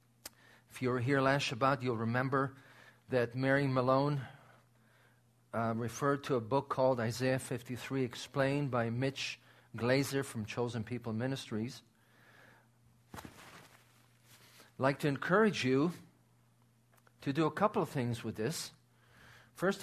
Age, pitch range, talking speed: 50-69, 120-145 Hz, 125 wpm